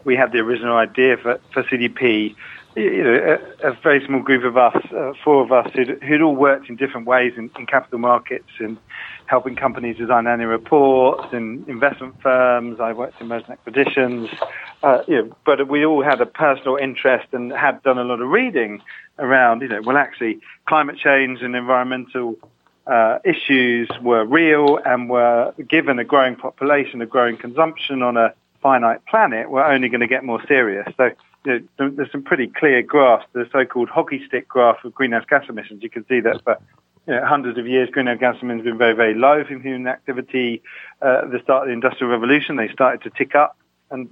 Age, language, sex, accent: 40-59, English, male, British